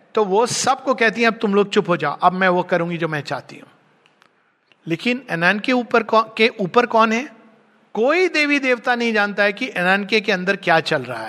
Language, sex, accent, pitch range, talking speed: Hindi, male, native, 170-225 Hz, 215 wpm